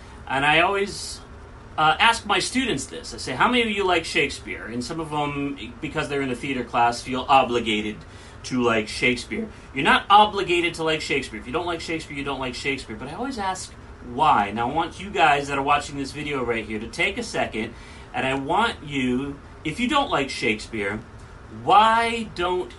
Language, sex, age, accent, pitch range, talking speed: English, male, 40-59, American, 115-180 Hz, 210 wpm